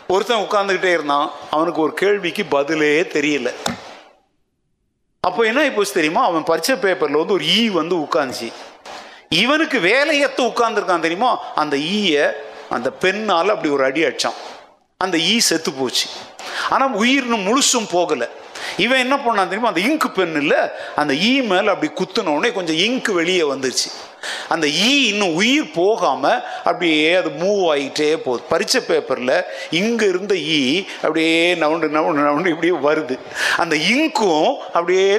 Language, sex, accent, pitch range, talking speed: English, male, Indian, 160-245 Hz, 125 wpm